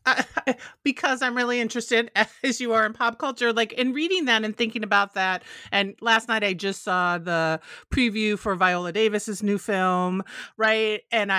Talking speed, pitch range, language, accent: 175 wpm, 180-230 Hz, English, American